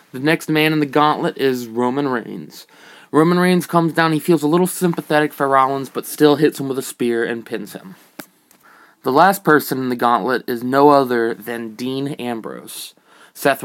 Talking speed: 190 wpm